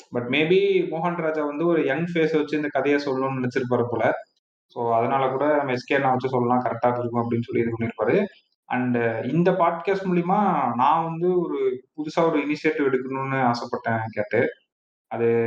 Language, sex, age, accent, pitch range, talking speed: Tamil, male, 30-49, native, 125-160 Hz, 120 wpm